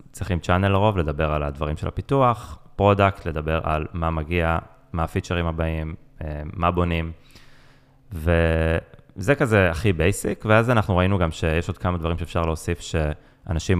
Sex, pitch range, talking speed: male, 80-100 Hz, 145 wpm